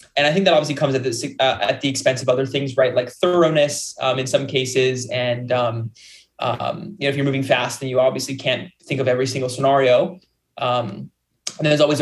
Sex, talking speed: male, 220 wpm